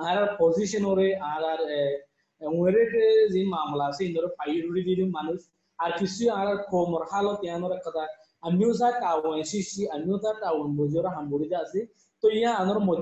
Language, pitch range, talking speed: English, 160-195 Hz, 85 wpm